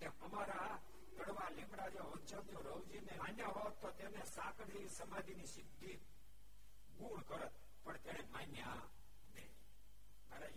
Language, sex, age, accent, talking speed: Gujarati, male, 60-79, native, 85 wpm